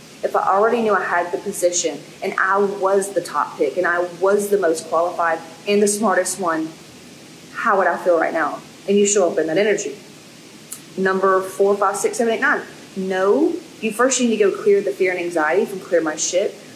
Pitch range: 190-265 Hz